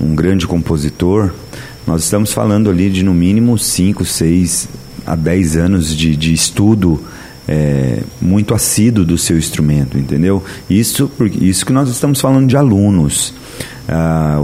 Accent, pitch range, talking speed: Brazilian, 85-105 Hz, 140 wpm